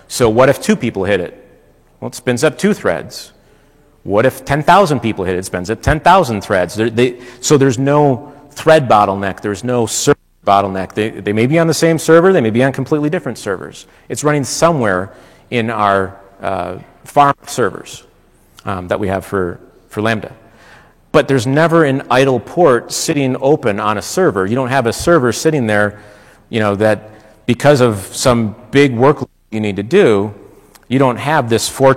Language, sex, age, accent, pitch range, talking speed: English, male, 40-59, American, 105-135 Hz, 185 wpm